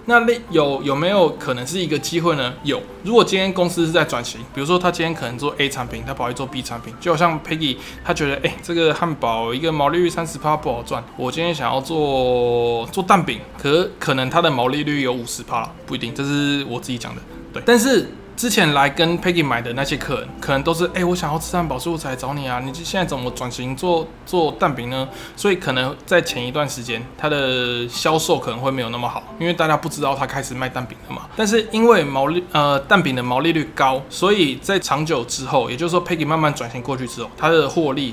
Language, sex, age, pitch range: Chinese, male, 20-39, 125-170 Hz